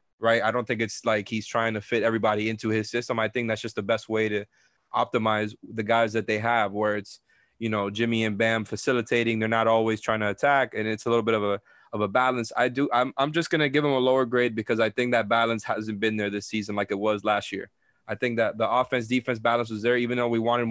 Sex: male